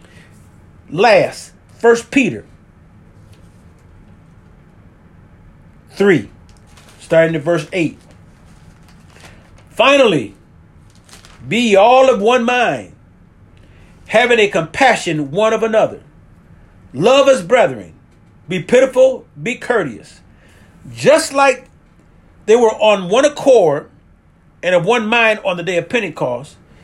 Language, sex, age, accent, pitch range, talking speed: English, male, 40-59, American, 145-245 Hz, 95 wpm